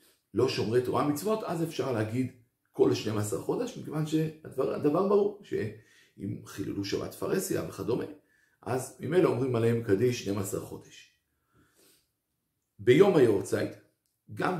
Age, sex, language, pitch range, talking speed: 50-69, male, Hebrew, 105-160 Hz, 115 wpm